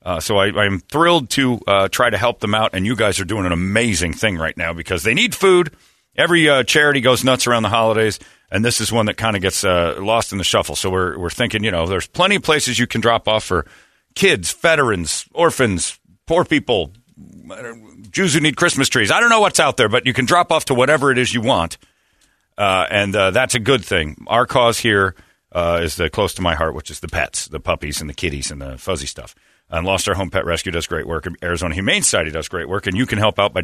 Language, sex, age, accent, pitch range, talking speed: English, male, 40-59, American, 90-125 Hz, 250 wpm